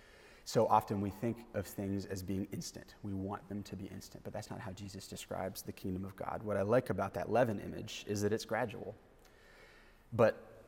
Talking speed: 210 wpm